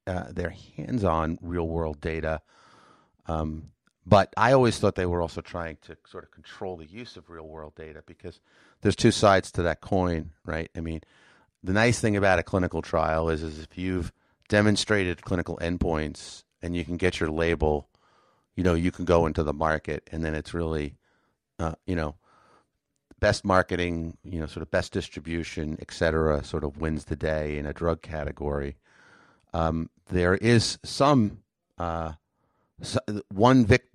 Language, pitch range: English, 80-95 Hz